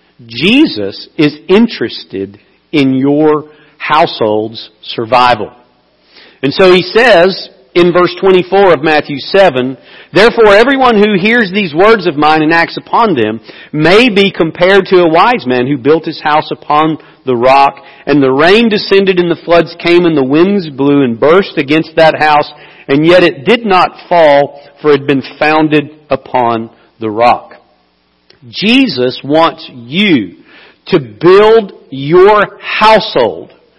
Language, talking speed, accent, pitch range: English, 145 wpm, American, 125-180 Hz